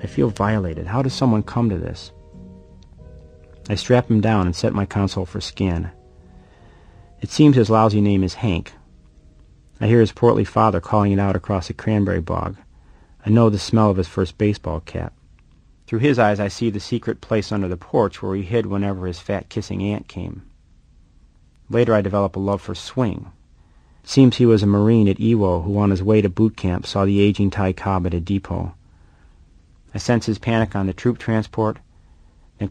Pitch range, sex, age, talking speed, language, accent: 90-110 Hz, male, 40-59, 195 wpm, English, American